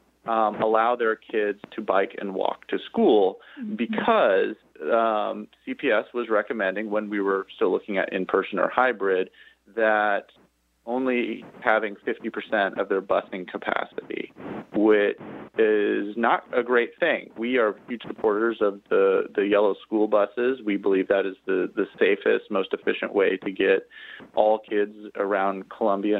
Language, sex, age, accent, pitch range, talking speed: English, male, 30-49, American, 100-125 Hz, 145 wpm